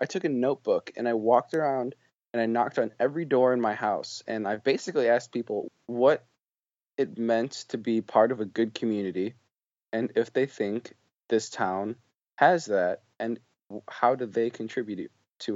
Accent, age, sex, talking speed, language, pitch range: American, 20-39, male, 175 wpm, English, 110-125 Hz